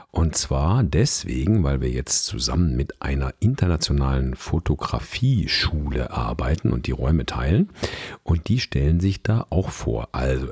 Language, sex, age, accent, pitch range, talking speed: German, male, 50-69, German, 70-105 Hz, 135 wpm